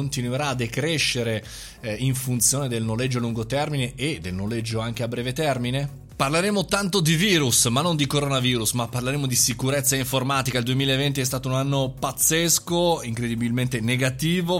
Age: 20-39